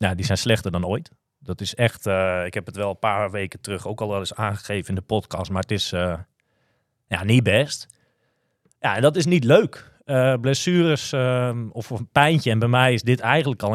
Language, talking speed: Dutch, 225 wpm